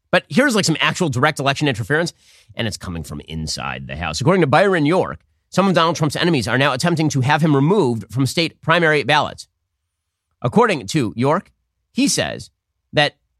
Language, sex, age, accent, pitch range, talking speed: English, male, 30-49, American, 125-175 Hz, 185 wpm